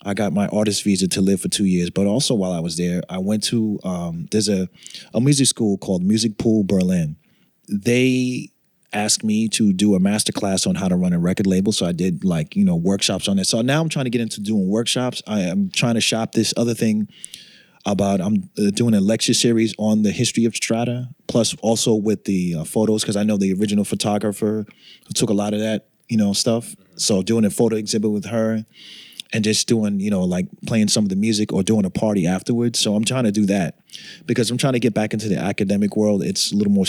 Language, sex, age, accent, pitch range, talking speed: English, male, 30-49, American, 100-125 Hz, 235 wpm